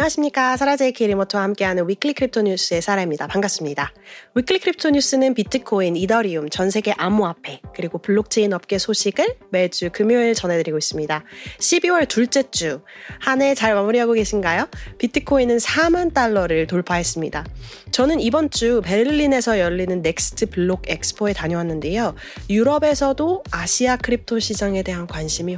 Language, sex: Korean, female